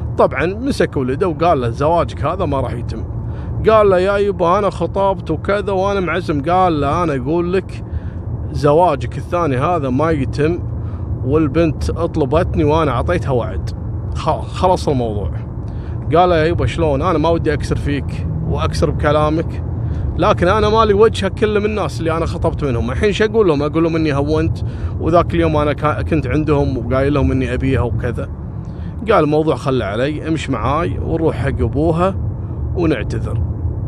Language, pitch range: Arabic, 105-160 Hz